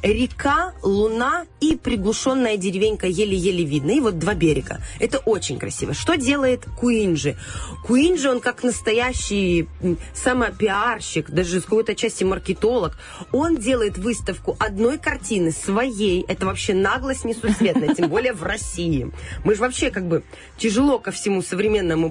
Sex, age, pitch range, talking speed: female, 20-39, 180-245 Hz, 135 wpm